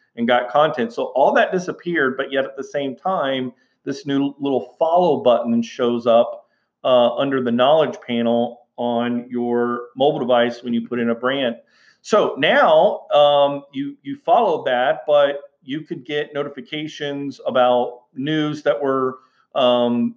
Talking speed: 155 wpm